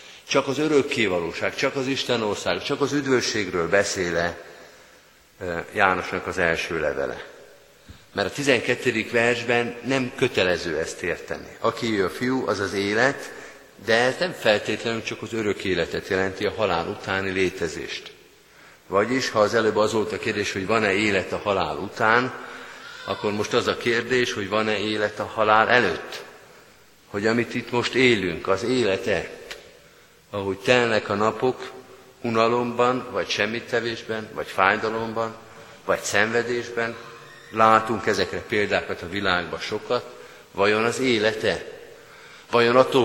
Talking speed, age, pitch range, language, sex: 135 wpm, 50-69, 105-125 Hz, Hungarian, male